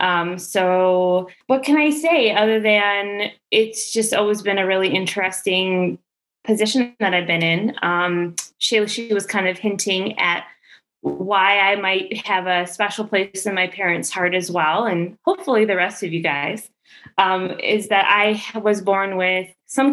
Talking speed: 170 wpm